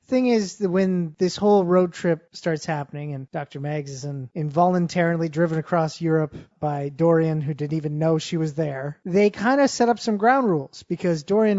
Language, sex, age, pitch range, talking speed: English, male, 30-49, 160-195 Hz, 190 wpm